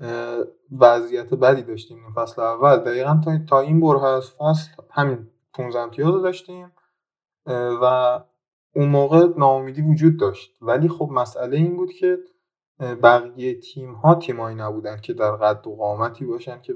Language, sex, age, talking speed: Persian, male, 20-39, 140 wpm